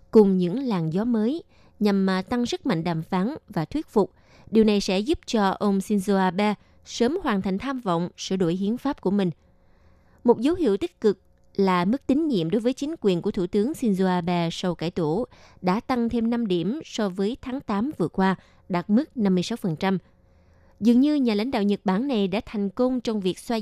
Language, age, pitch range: Vietnamese, 20-39, 180-240 Hz